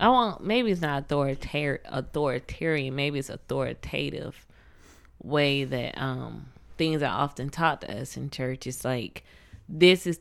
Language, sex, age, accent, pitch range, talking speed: English, female, 20-39, American, 135-160 Hz, 145 wpm